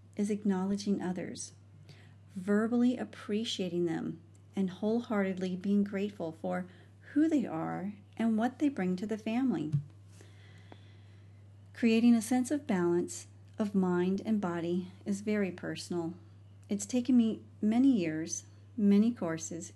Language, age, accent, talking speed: English, 40-59, American, 120 wpm